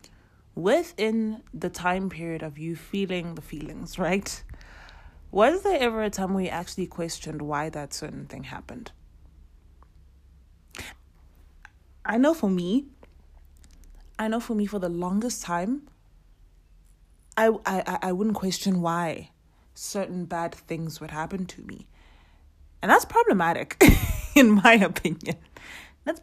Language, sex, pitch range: English, female, 155-205 Hz